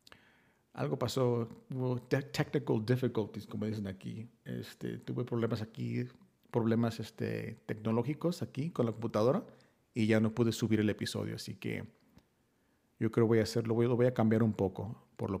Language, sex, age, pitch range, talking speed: Spanish, male, 40-59, 110-135 Hz, 165 wpm